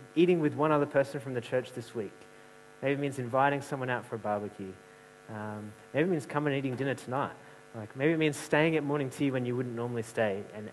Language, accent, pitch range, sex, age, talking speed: English, Australian, 110-135 Hz, male, 30-49, 235 wpm